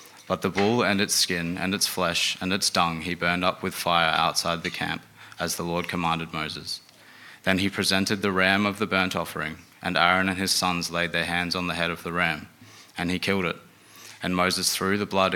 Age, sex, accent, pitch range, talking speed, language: 20-39, male, Australian, 85-95 Hz, 225 wpm, English